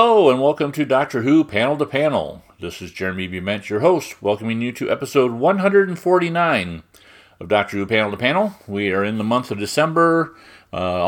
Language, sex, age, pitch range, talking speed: English, male, 30-49, 100-125 Hz, 185 wpm